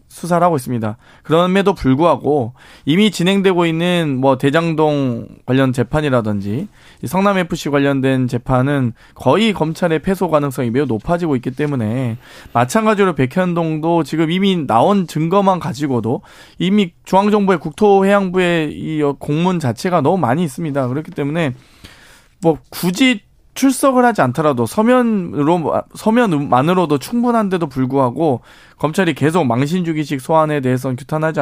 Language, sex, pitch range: Korean, male, 130-180 Hz